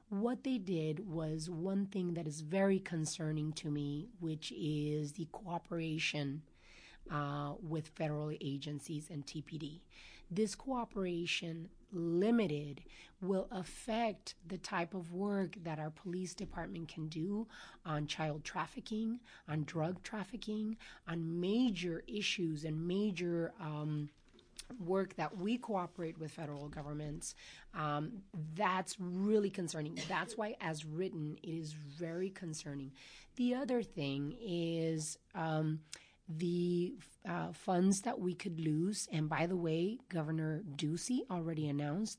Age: 30-49